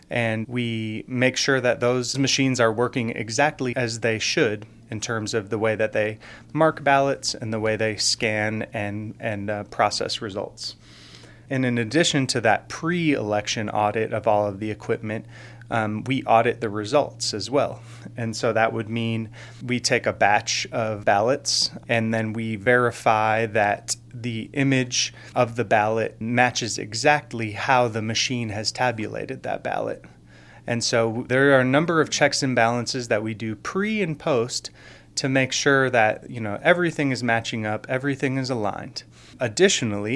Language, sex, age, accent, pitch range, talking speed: English, male, 30-49, American, 110-125 Hz, 165 wpm